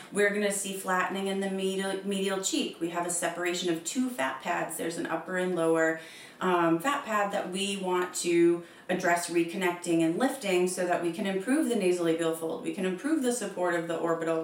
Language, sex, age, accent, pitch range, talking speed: English, female, 30-49, American, 165-195 Hz, 200 wpm